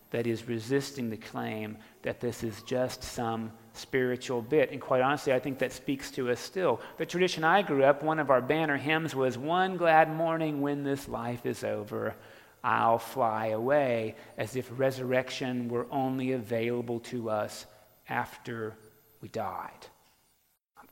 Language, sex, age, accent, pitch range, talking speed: English, male, 40-59, American, 115-155 Hz, 160 wpm